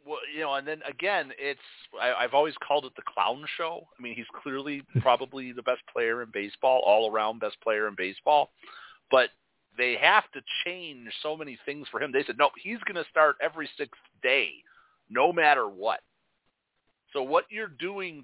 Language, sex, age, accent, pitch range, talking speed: English, male, 40-59, American, 120-140 Hz, 190 wpm